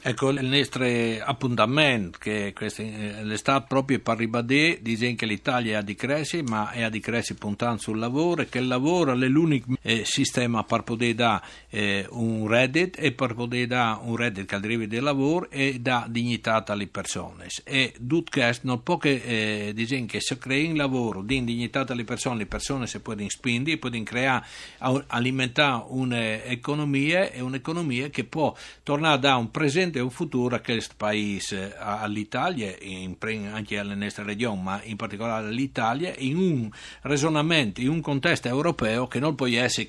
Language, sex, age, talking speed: Italian, male, 60-79, 170 wpm